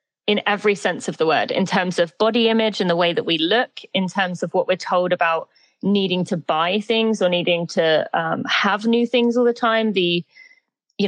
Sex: female